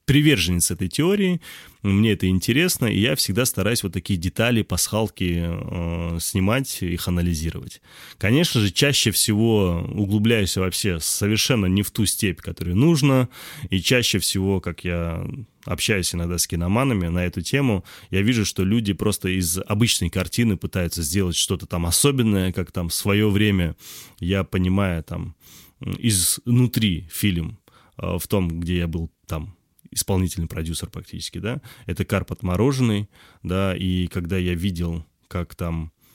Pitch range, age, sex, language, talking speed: 85-110 Hz, 20-39, male, Russian, 145 wpm